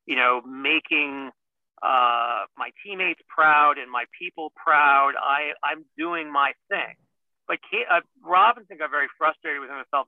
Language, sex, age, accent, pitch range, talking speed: English, male, 40-59, American, 140-170 Hz, 150 wpm